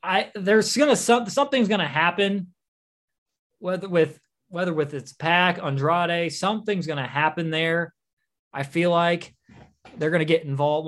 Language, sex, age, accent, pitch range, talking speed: English, male, 20-39, American, 140-190 Hz, 130 wpm